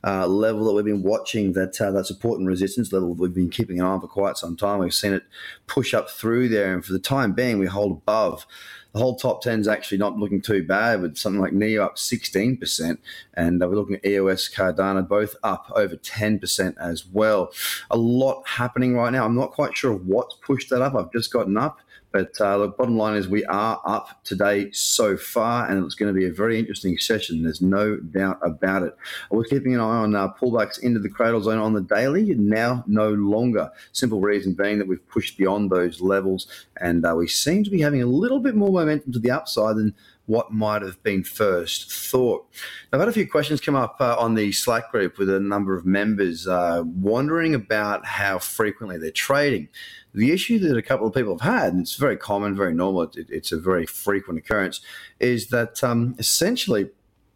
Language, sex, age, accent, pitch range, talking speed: English, male, 30-49, Australian, 95-120 Hz, 220 wpm